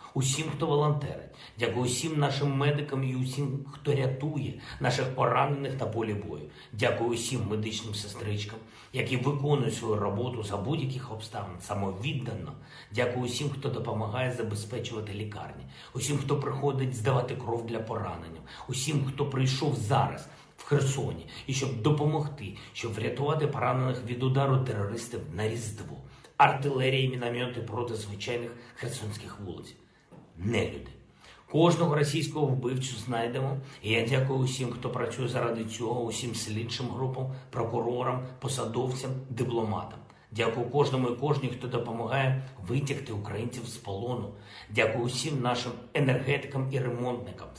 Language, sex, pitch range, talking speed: Ukrainian, male, 115-135 Hz, 125 wpm